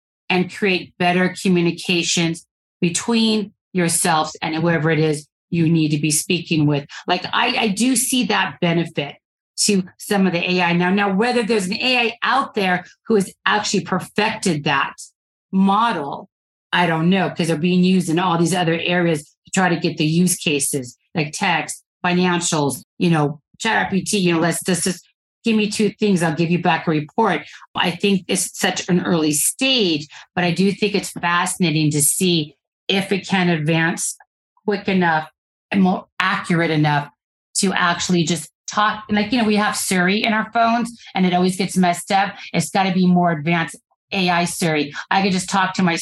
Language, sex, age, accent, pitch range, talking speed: English, female, 40-59, American, 165-195 Hz, 185 wpm